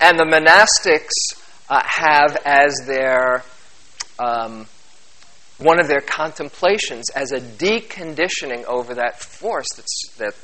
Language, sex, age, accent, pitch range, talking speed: English, male, 40-59, American, 120-150 Hz, 115 wpm